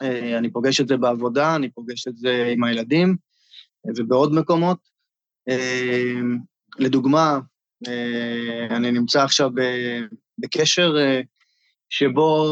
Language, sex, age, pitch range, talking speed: Hebrew, male, 20-39, 125-160 Hz, 90 wpm